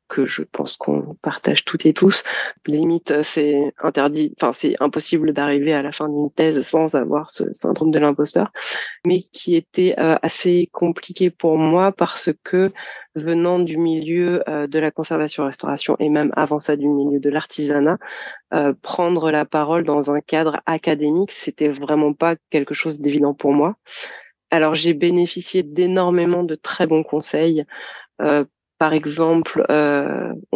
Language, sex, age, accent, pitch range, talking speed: French, female, 30-49, French, 150-170 Hz, 155 wpm